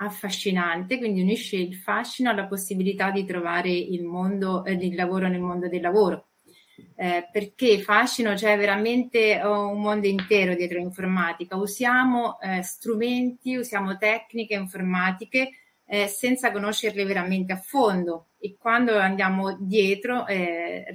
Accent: native